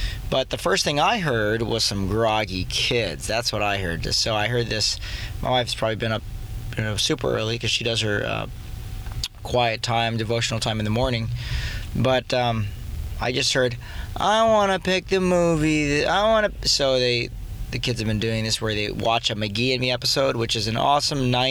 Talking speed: 205 wpm